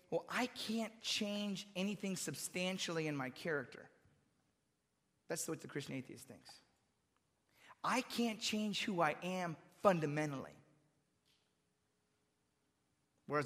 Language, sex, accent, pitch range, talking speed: English, male, American, 145-190 Hz, 105 wpm